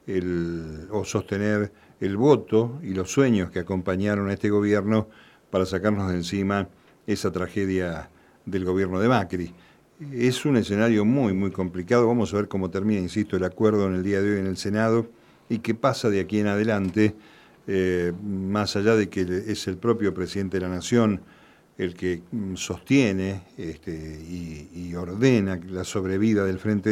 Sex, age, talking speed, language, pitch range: male, 50-69, 165 wpm, Spanish, 95-110 Hz